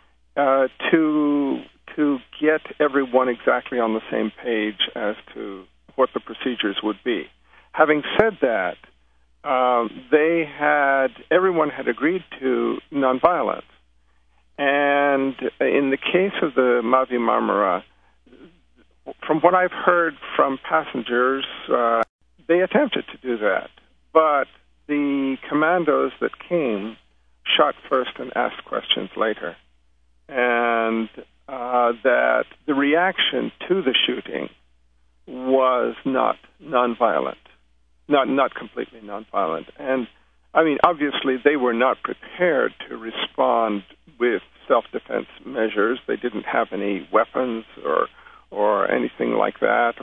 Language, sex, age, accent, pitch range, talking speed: English, male, 50-69, American, 100-140 Hz, 115 wpm